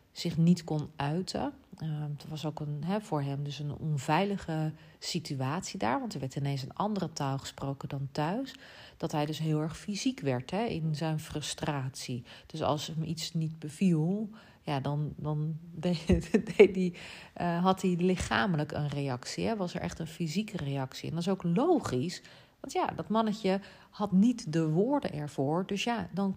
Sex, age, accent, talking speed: female, 40-59, Dutch, 165 wpm